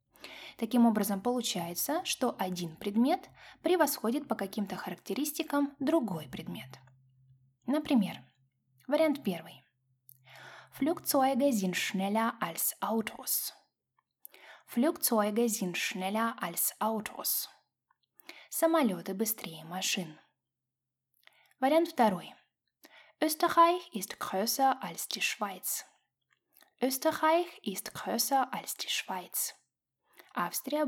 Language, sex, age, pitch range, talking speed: Russian, female, 10-29, 185-270 Hz, 55 wpm